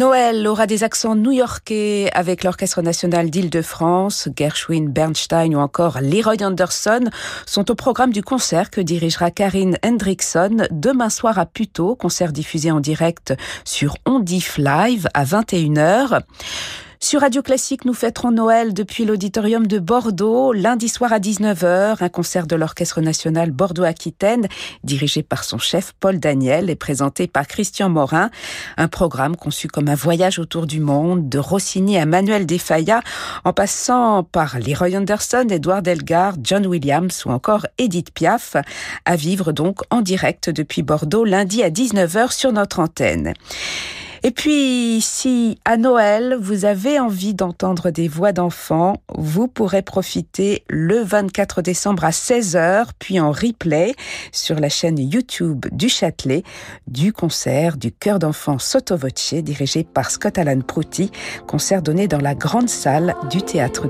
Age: 50-69